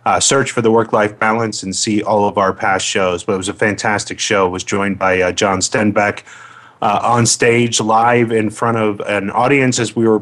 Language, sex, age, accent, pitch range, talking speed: English, male, 30-49, American, 95-115 Hz, 225 wpm